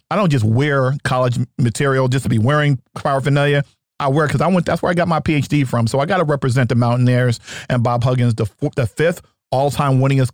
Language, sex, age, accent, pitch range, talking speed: English, male, 40-59, American, 125-155 Hz, 220 wpm